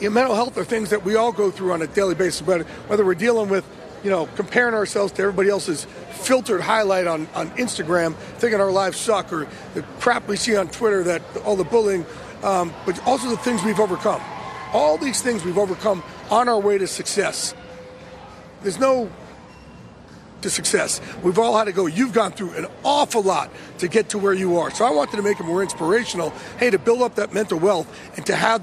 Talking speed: 215 wpm